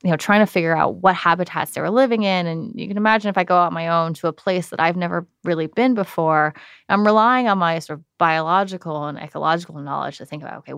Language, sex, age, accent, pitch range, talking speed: English, female, 20-39, American, 160-190 Hz, 255 wpm